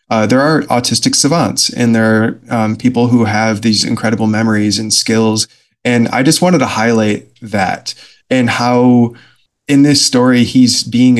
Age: 20-39